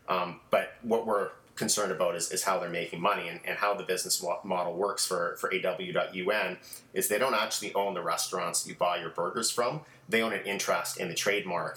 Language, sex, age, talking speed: English, male, 30-49, 210 wpm